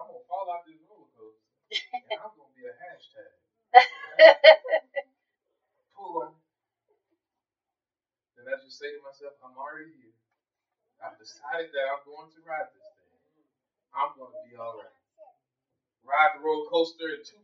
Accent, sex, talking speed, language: American, male, 170 wpm, English